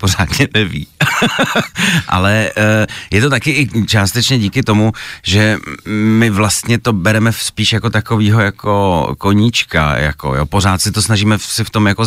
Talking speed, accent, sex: 150 wpm, native, male